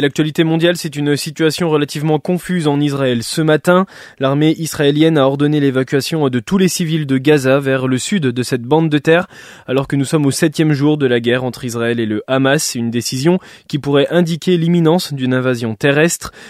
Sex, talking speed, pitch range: male, 195 wpm, 130-160 Hz